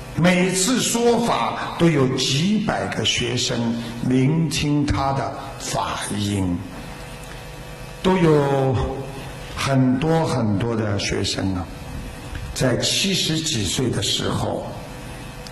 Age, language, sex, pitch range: 60-79, Chinese, male, 110-140 Hz